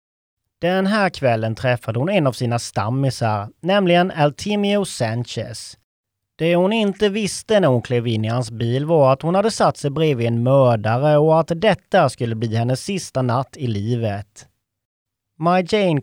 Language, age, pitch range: English, 30-49, 115-175 Hz